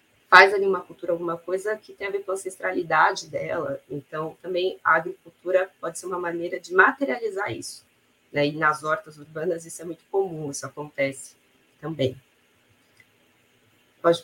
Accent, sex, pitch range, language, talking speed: Brazilian, female, 155-200 Hz, Portuguese, 160 wpm